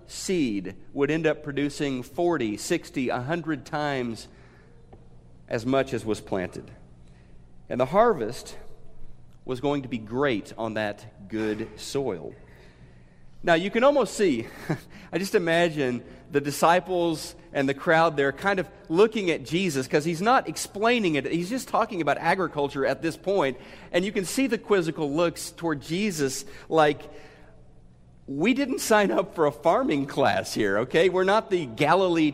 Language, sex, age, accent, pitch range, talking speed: English, male, 40-59, American, 135-190 Hz, 150 wpm